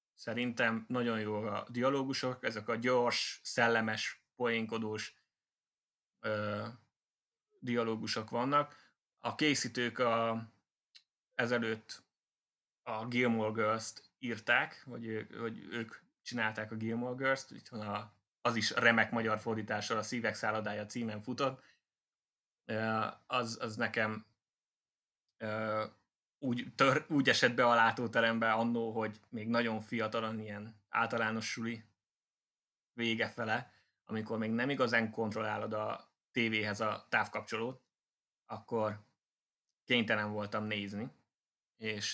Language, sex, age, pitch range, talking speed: Hungarian, male, 20-39, 110-120 Hz, 105 wpm